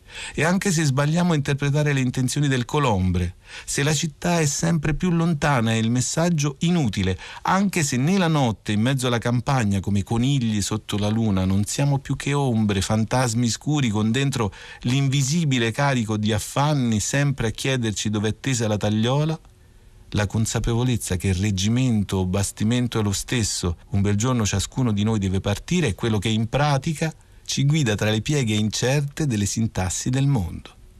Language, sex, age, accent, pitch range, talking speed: Italian, male, 40-59, native, 100-140 Hz, 170 wpm